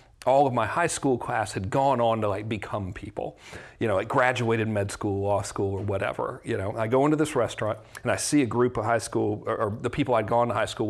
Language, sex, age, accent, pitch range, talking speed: English, male, 40-59, American, 110-140 Hz, 260 wpm